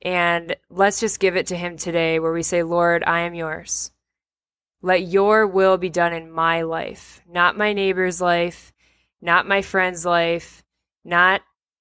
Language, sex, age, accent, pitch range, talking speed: English, female, 20-39, American, 165-190 Hz, 165 wpm